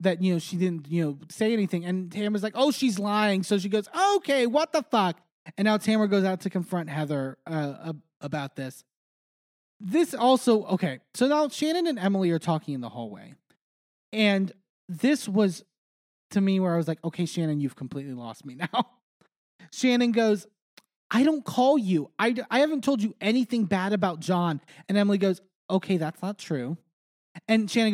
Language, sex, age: English, male, 20-39